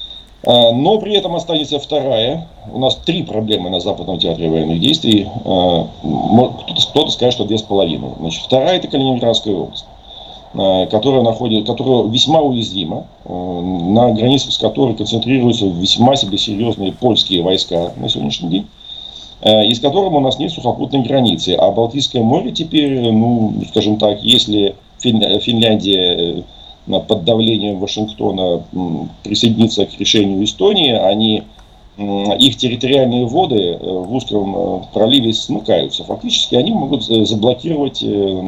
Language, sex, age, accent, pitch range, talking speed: Russian, male, 40-59, native, 100-130 Hz, 125 wpm